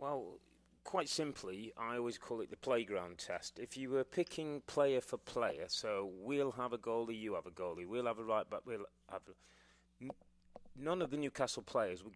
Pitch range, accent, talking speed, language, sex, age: 110-145 Hz, British, 190 wpm, English, male, 30-49